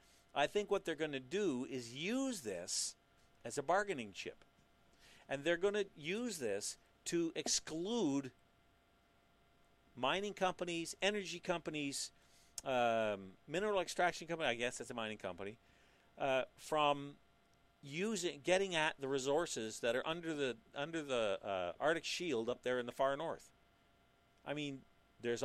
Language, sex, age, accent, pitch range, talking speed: English, male, 50-69, American, 120-175 Hz, 145 wpm